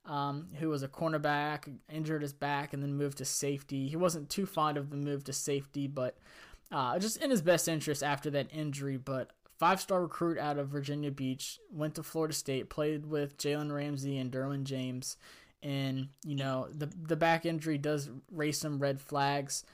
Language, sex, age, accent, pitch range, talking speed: English, male, 20-39, American, 135-155 Hz, 190 wpm